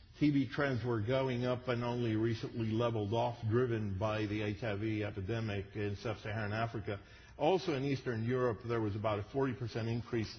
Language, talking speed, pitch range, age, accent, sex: English, 160 wpm, 105-125 Hz, 50-69, American, male